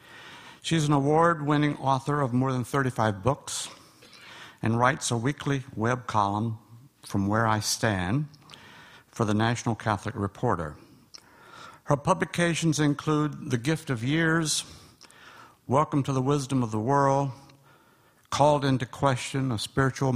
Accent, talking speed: American, 130 wpm